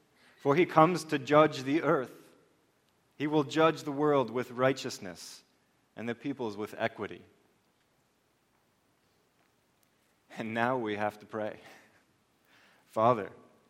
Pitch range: 110-135 Hz